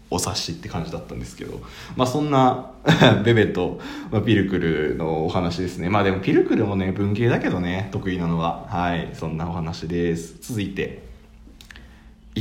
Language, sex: Japanese, male